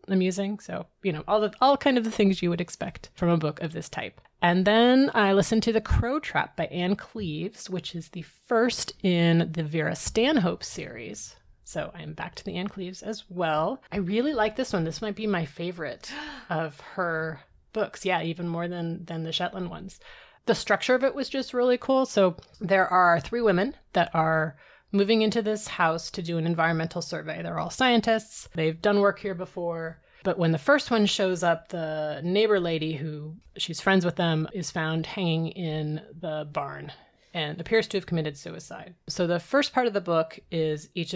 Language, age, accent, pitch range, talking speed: English, 30-49, American, 160-205 Hz, 200 wpm